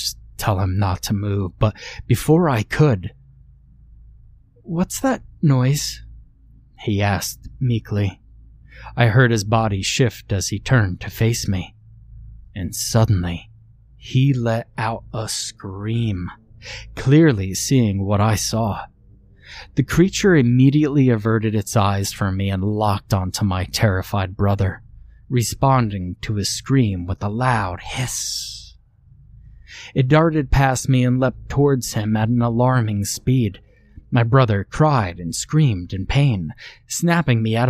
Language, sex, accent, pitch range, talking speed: English, male, American, 100-130 Hz, 130 wpm